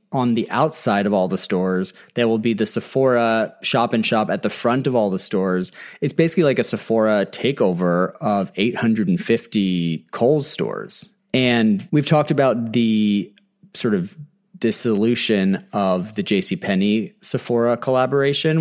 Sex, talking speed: male, 135 wpm